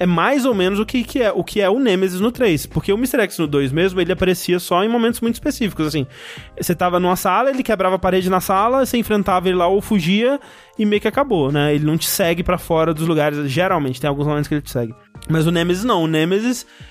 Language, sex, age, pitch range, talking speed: Portuguese, male, 20-39, 155-210 Hz, 250 wpm